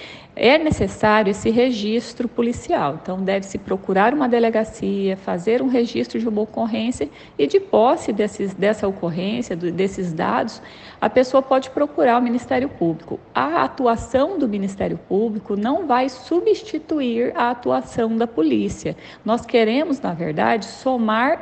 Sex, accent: female, Brazilian